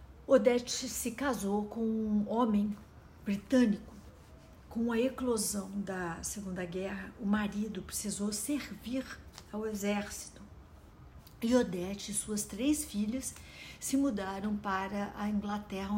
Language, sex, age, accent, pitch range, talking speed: Portuguese, female, 60-79, Brazilian, 190-225 Hz, 115 wpm